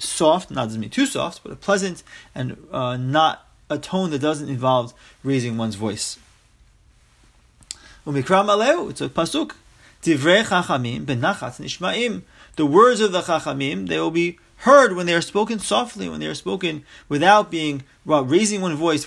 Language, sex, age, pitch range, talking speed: English, male, 30-49, 130-195 Hz, 150 wpm